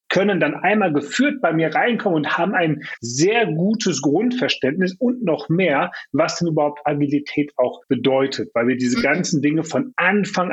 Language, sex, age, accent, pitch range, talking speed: German, male, 40-59, German, 140-185 Hz, 165 wpm